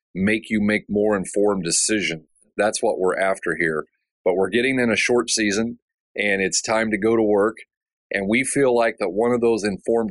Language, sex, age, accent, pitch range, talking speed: English, male, 40-59, American, 100-115 Hz, 200 wpm